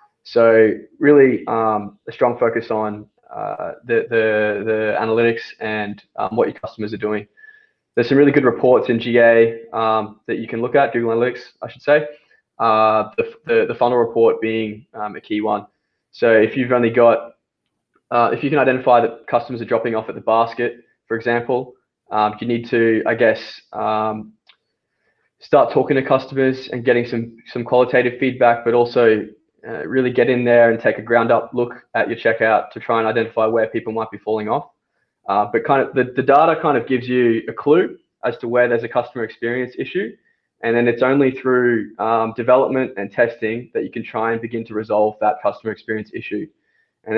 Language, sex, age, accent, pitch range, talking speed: English, male, 20-39, Australian, 110-125 Hz, 195 wpm